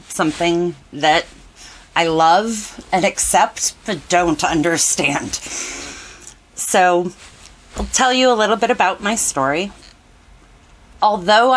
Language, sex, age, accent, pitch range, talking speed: English, female, 30-49, American, 145-210 Hz, 105 wpm